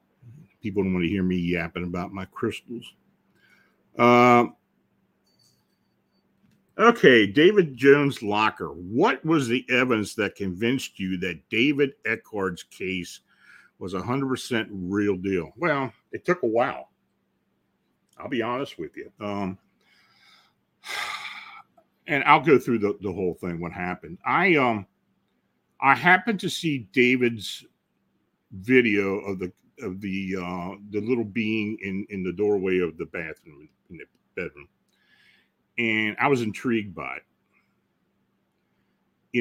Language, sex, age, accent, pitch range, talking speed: English, male, 60-79, American, 95-120 Hz, 130 wpm